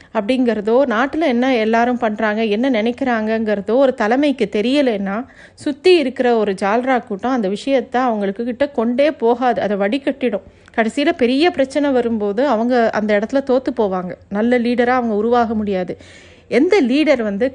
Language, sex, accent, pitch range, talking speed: Tamil, female, native, 220-270 Hz, 135 wpm